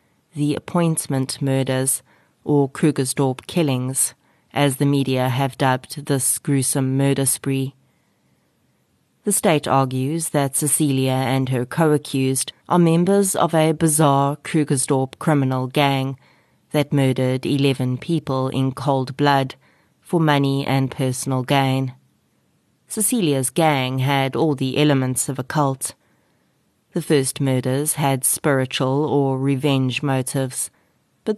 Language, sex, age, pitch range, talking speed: English, female, 30-49, 130-150 Hz, 115 wpm